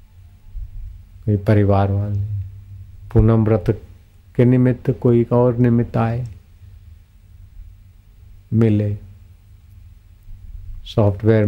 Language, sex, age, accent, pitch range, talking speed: Hindi, male, 40-59, native, 95-115 Hz, 65 wpm